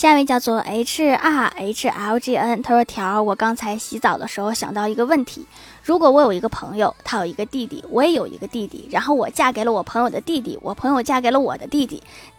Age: 20-39